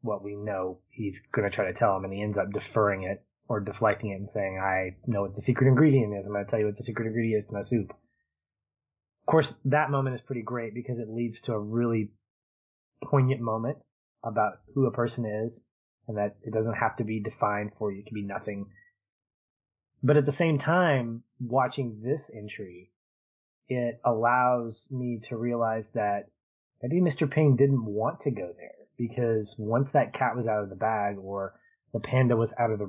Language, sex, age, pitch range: English, male, 20-39, 100-125 Hz